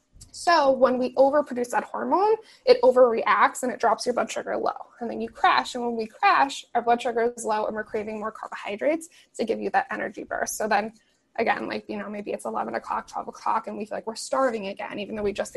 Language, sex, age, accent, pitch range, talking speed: English, female, 20-39, American, 230-295 Hz, 240 wpm